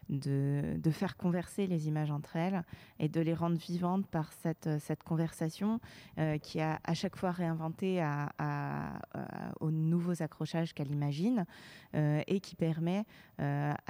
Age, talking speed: 20-39, 160 wpm